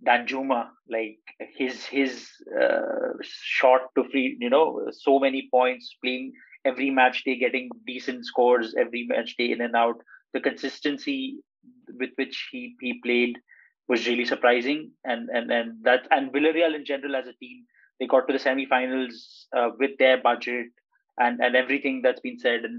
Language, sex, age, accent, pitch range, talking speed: English, male, 30-49, Indian, 125-140 Hz, 165 wpm